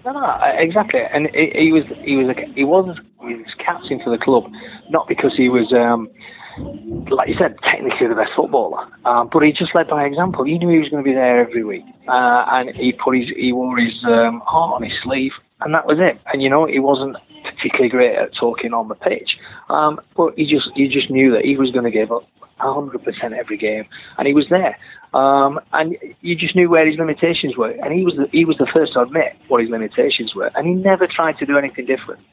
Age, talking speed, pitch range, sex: 30-49, 230 wpm, 125-165 Hz, male